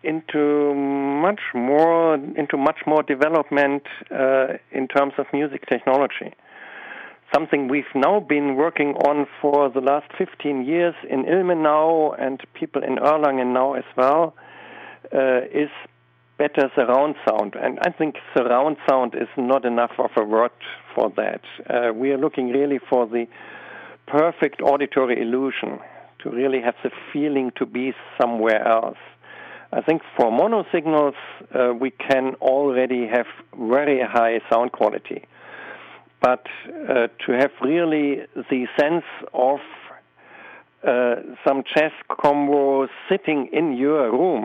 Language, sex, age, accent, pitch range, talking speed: Spanish, male, 50-69, German, 125-150 Hz, 135 wpm